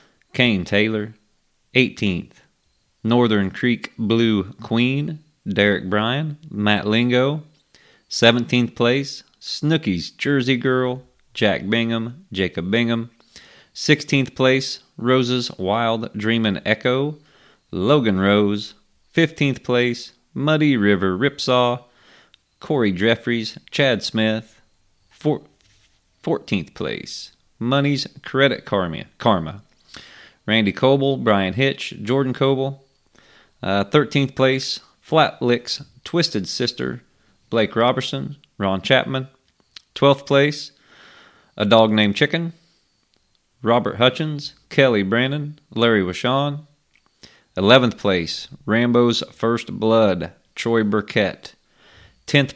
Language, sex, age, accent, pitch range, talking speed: English, male, 30-49, American, 105-135 Hz, 90 wpm